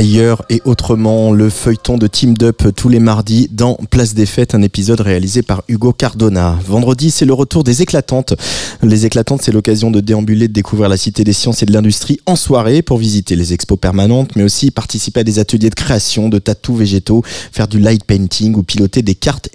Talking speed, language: 210 wpm, French